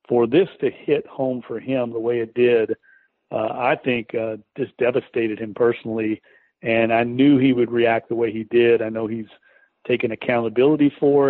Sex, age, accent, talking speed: male, 50-69, American, 185 wpm